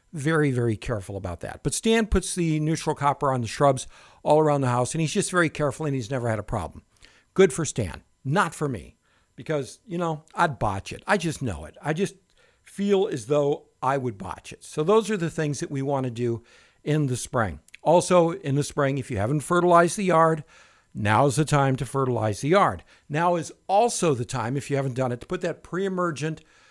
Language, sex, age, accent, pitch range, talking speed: English, male, 60-79, American, 130-170 Hz, 220 wpm